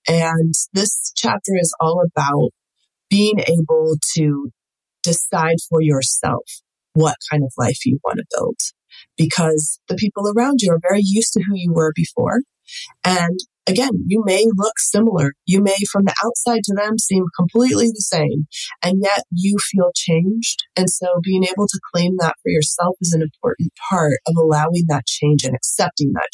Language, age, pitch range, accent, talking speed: English, 30-49, 150-195 Hz, American, 170 wpm